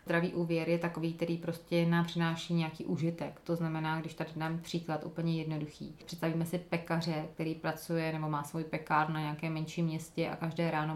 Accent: native